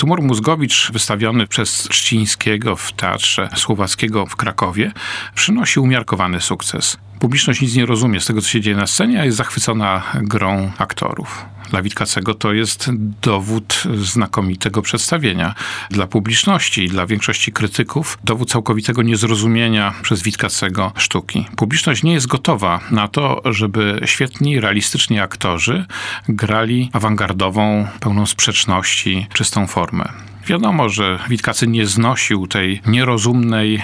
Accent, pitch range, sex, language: native, 100-115 Hz, male, Polish